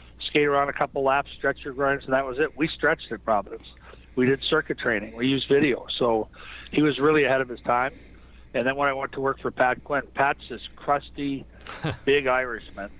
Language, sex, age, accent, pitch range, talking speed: English, male, 50-69, American, 105-140 Hz, 210 wpm